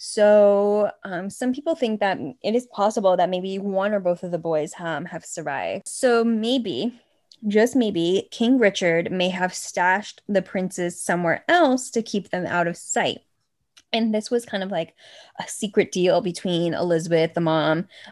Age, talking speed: 10-29, 170 wpm